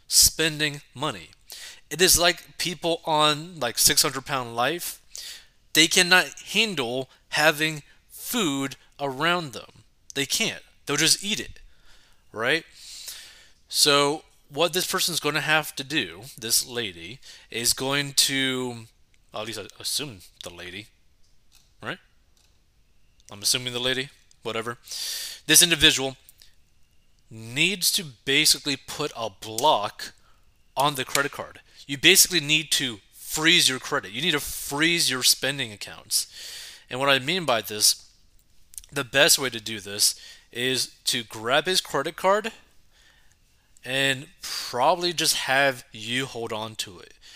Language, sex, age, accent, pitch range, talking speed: English, male, 20-39, American, 115-155 Hz, 135 wpm